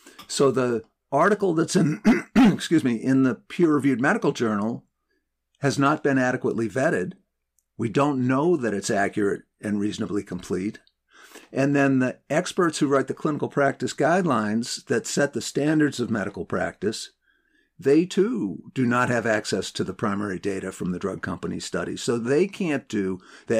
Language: English